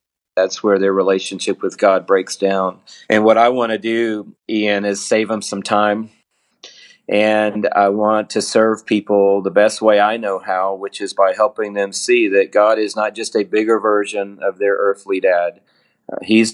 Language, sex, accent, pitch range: English, male, American, 100-115 Hz